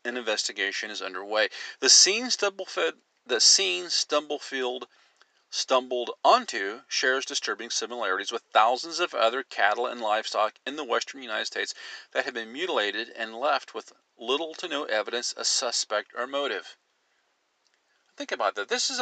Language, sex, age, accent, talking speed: English, male, 40-59, American, 140 wpm